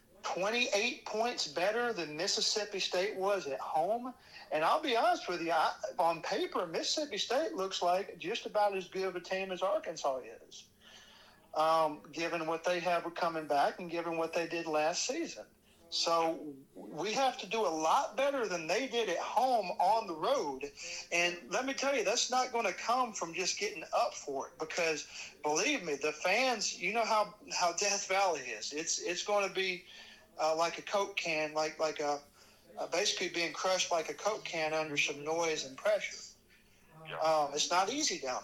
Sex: male